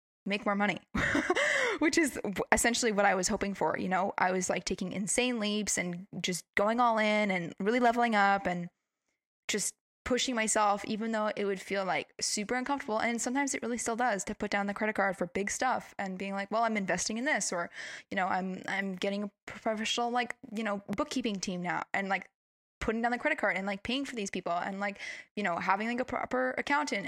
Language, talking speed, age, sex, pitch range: English, 220 wpm, 10-29, female, 195-235 Hz